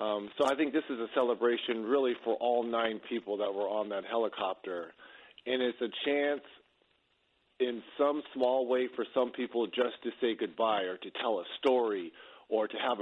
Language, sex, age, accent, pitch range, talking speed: English, male, 50-69, American, 115-145 Hz, 190 wpm